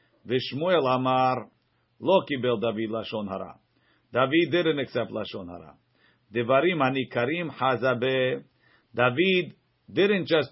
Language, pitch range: English, 125-160 Hz